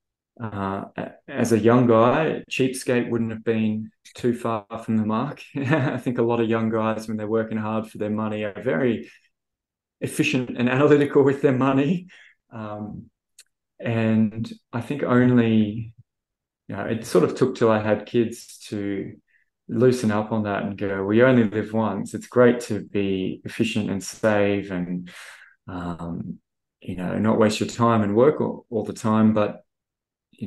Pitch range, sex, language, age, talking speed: 105-120 Hz, male, English, 20-39, 165 wpm